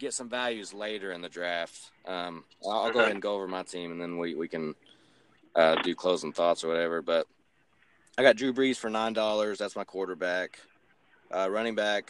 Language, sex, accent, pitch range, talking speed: English, male, American, 85-105 Hz, 205 wpm